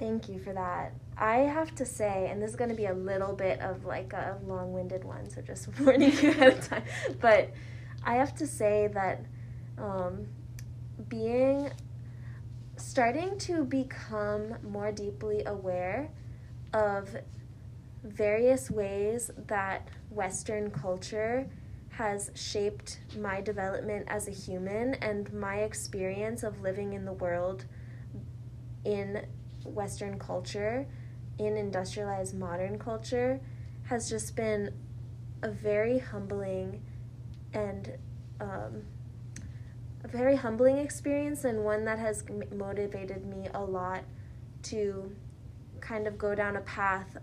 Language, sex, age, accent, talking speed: English, female, 20-39, American, 125 wpm